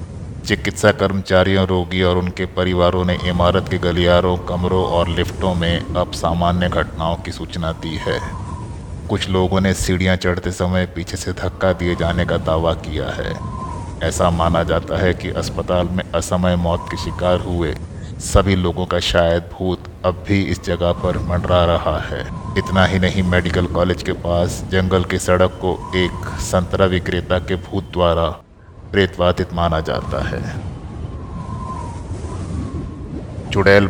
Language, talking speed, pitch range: Hindi, 145 wpm, 85-95 Hz